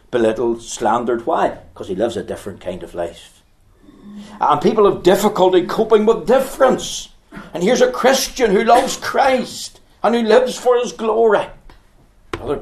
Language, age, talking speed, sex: English, 60-79, 150 wpm, male